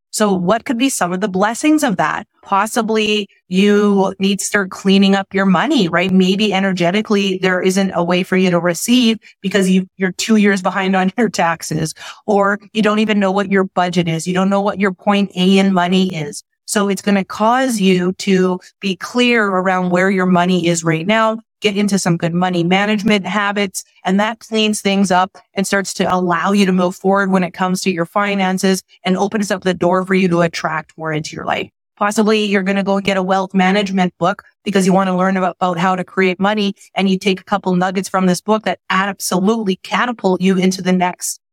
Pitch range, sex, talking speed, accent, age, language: 185-205 Hz, female, 215 wpm, American, 30-49, English